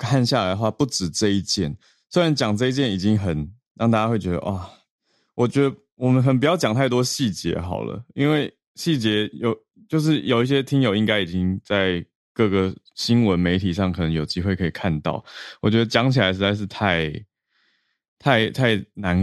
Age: 20-39